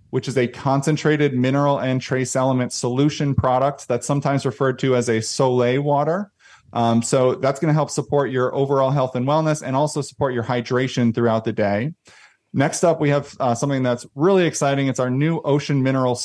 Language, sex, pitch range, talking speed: English, male, 125-145 Hz, 190 wpm